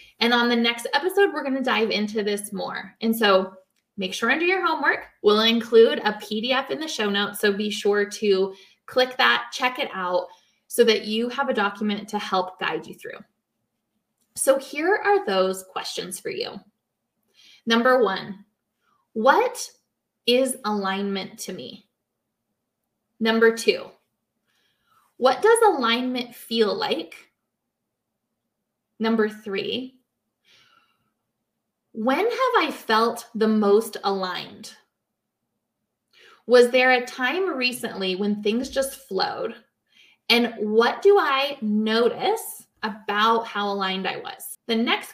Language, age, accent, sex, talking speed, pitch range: English, 20-39, American, female, 130 wpm, 210-260 Hz